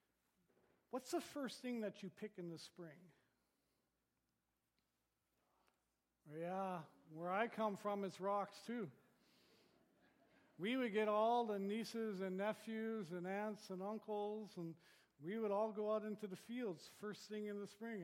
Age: 50-69